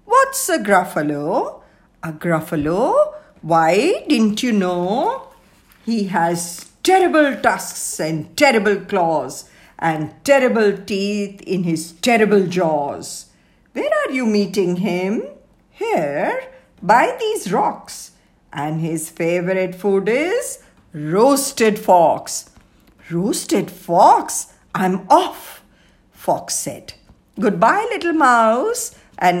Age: 60-79